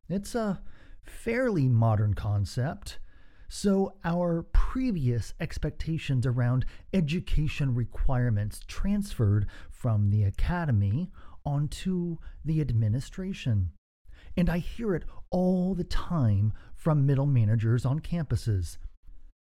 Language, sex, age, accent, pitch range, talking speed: English, male, 40-59, American, 105-155 Hz, 95 wpm